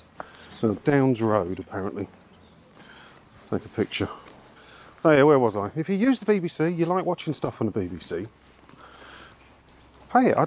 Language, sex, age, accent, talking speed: English, male, 40-59, British, 150 wpm